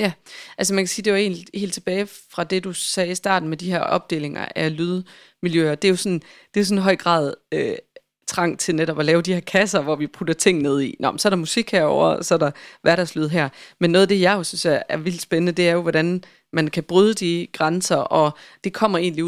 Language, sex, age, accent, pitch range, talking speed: Danish, female, 30-49, native, 160-185 Hz, 245 wpm